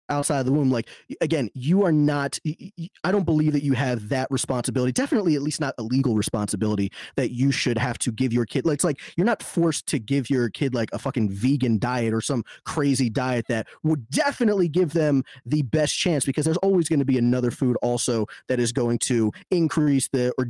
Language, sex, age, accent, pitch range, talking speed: English, male, 20-39, American, 120-155 Hz, 220 wpm